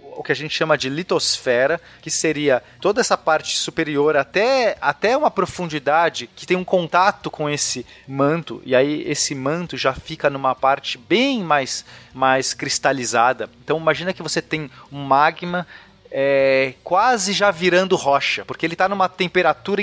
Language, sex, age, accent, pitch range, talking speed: Portuguese, male, 30-49, Brazilian, 145-185 Hz, 155 wpm